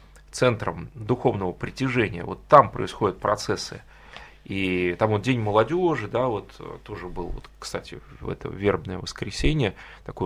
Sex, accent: male, native